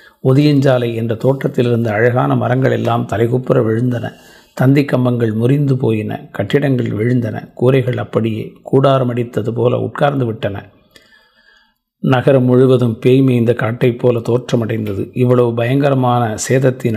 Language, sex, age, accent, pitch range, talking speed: Tamil, male, 50-69, native, 110-130 Hz, 100 wpm